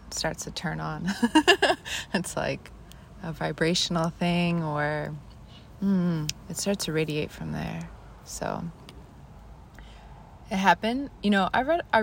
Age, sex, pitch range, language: 20-39, female, 145-190 Hz, English